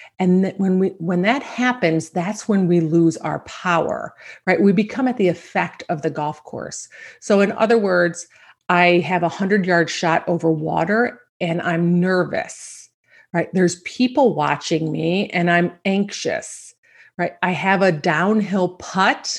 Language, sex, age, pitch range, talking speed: English, female, 40-59, 170-210 Hz, 160 wpm